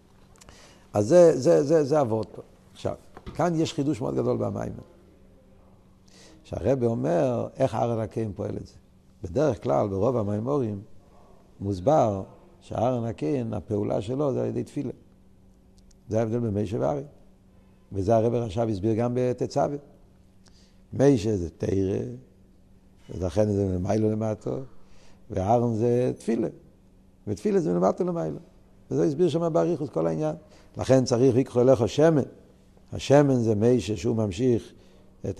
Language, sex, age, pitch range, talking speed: Hebrew, male, 60-79, 95-140 Hz, 125 wpm